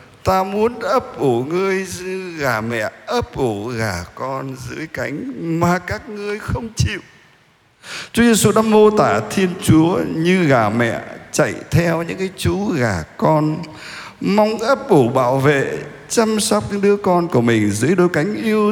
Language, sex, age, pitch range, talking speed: Vietnamese, male, 60-79, 115-190 Hz, 165 wpm